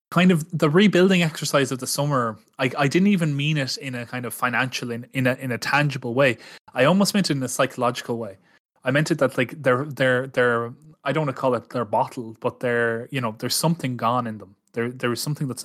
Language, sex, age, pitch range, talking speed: English, male, 20-39, 120-135 Hz, 245 wpm